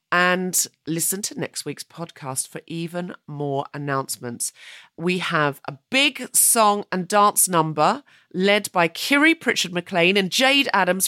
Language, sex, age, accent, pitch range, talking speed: English, female, 30-49, British, 155-215 Hz, 135 wpm